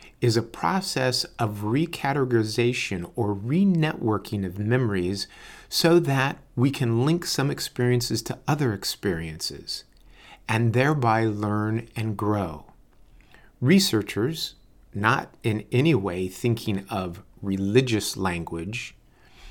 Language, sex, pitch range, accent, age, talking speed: English, male, 100-125 Hz, American, 50-69, 100 wpm